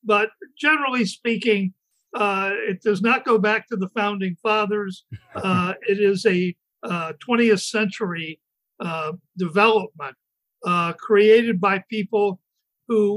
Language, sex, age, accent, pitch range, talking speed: English, male, 60-79, American, 185-225 Hz, 125 wpm